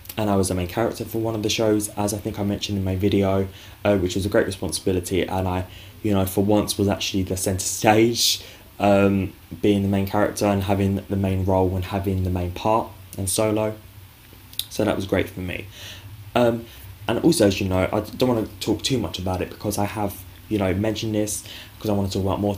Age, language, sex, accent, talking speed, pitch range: 10-29, English, male, British, 235 wpm, 95-105 Hz